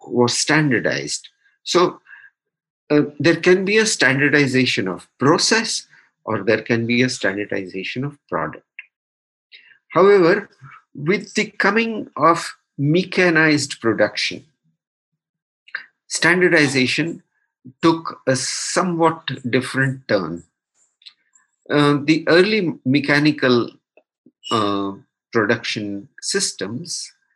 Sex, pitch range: male, 120-165 Hz